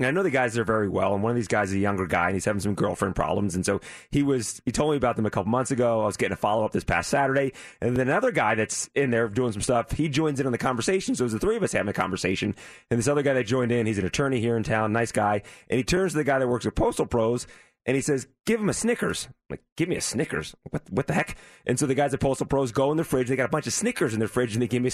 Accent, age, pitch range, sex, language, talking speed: American, 30-49, 120-150 Hz, male, English, 325 wpm